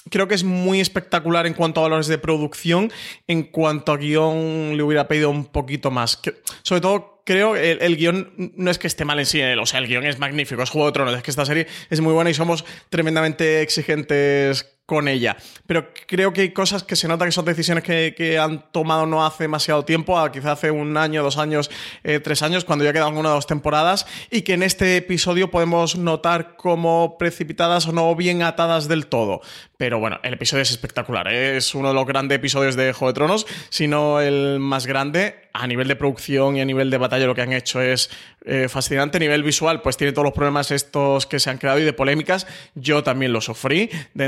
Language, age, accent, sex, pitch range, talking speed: Spanish, 20-39, Spanish, male, 135-165 Hz, 230 wpm